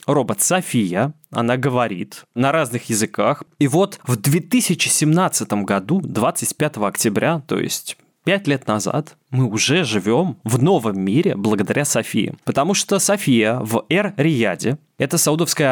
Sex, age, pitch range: male, 20-39, 130-185 Hz